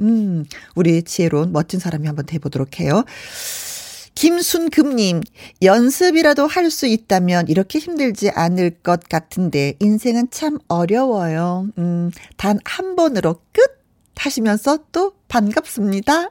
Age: 40-59